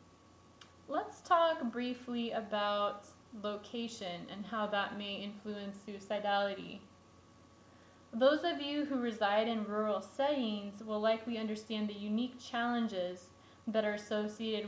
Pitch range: 205-250 Hz